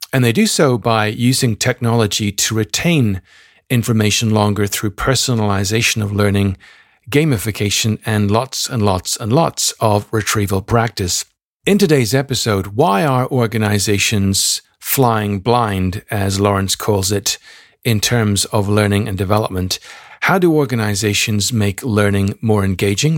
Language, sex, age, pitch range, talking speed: English, male, 50-69, 100-125 Hz, 130 wpm